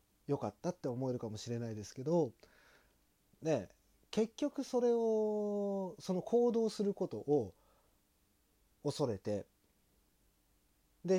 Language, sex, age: Japanese, male, 40-59